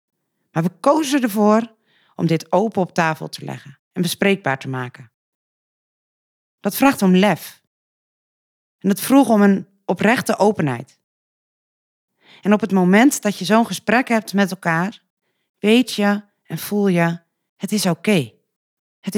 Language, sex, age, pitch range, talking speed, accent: Dutch, female, 40-59, 165-225 Hz, 145 wpm, Dutch